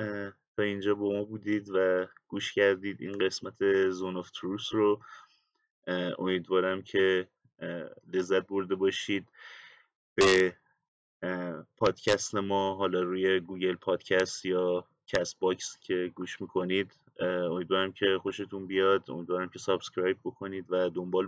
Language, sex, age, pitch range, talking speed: Persian, male, 30-49, 90-100 Hz, 120 wpm